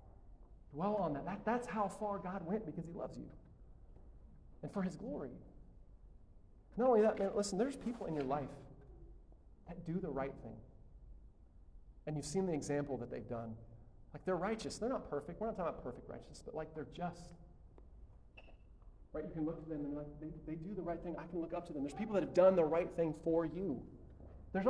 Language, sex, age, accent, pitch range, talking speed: English, male, 30-49, American, 120-175 Hz, 215 wpm